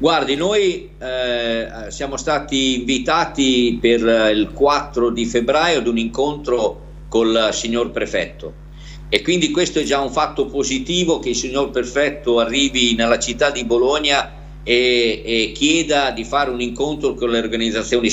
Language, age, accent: Italian, 50-69, native